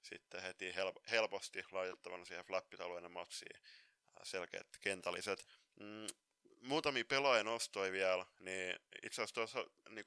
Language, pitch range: Finnish, 95-115 Hz